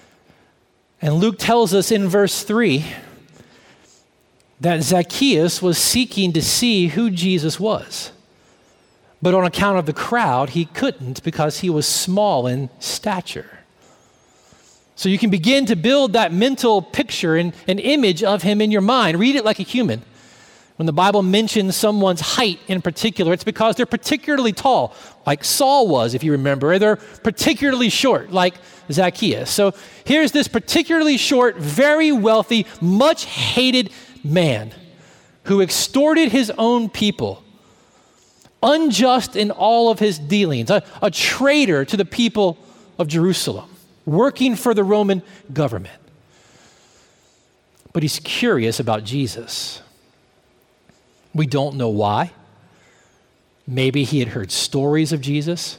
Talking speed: 135 wpm